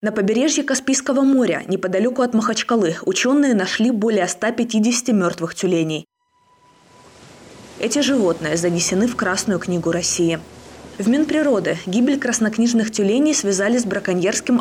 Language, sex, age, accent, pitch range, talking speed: Russian, female, 20-39, native, 175-240 Hz, 115 wpm